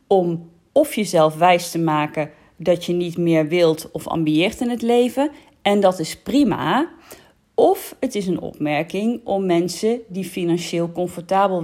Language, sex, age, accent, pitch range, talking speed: Dutch, female, 40-59, Dutch, 165-200 Hz, 155 wpm